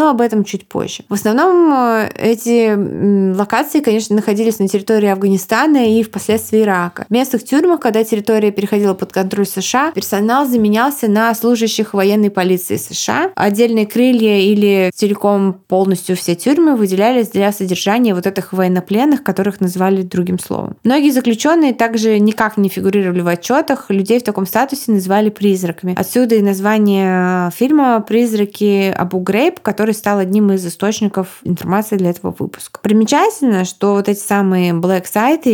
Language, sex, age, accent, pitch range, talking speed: Russian, female, 20-39, native, 190-225 Hz, 145 wpm